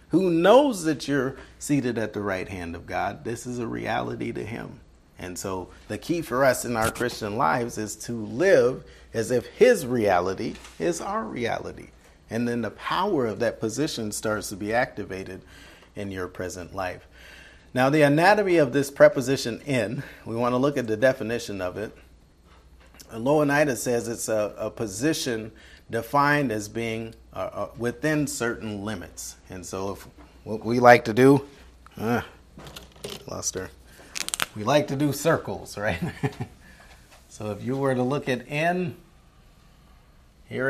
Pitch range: 90-135 Hz